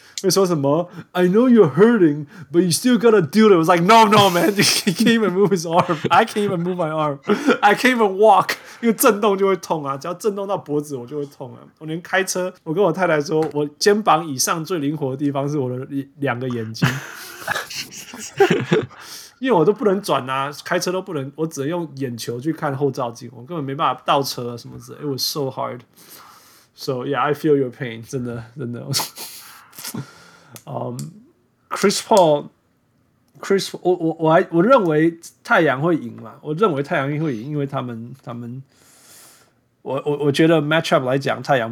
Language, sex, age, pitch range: Chinese, male, 20-39, 130-175 Hz